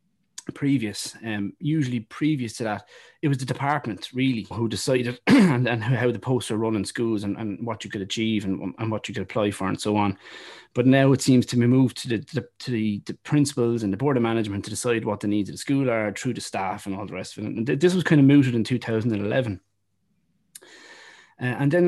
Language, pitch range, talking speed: English, 105-130 Hz, 240 wpm